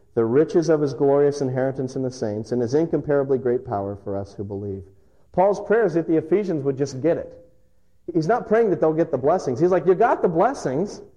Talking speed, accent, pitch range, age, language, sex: 225 wpm, American, 125-175 Hz, 40-59, English, male